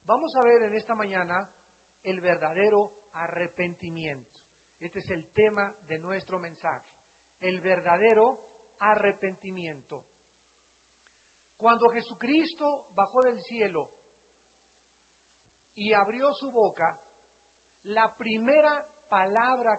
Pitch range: 195-245 Hz